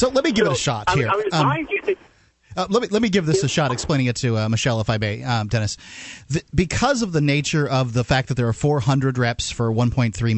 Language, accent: English, American